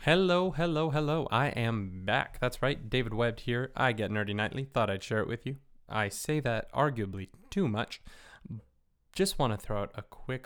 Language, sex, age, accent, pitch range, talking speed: English, male, 20-39, American, 105-135 Hz, 195 wpm